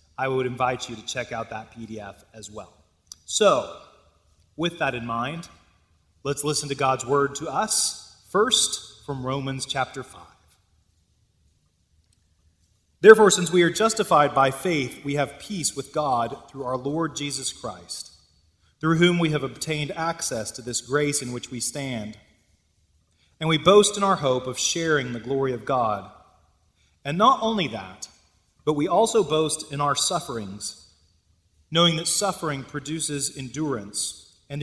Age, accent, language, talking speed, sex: 30-49, American, English, 150 wpm, male